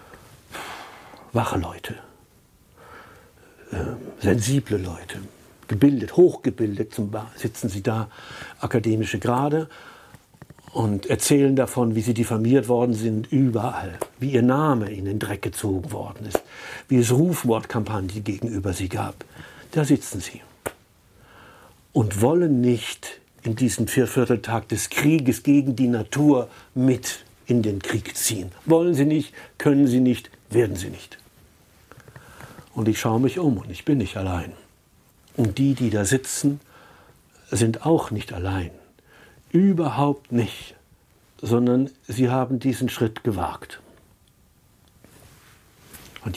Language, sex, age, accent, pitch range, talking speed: German, male, 60-79, German, 110-135 Hz, 120 wpm